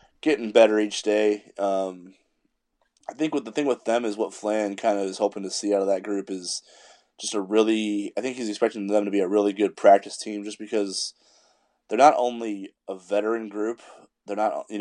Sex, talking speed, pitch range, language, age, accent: male, 210 wpm, 95-105 Hz, English, 20-39, American